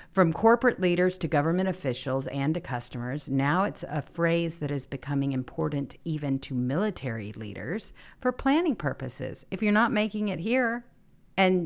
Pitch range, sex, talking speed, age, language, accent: 130-180 Hz, female, 160 wpm, 50-69, English, American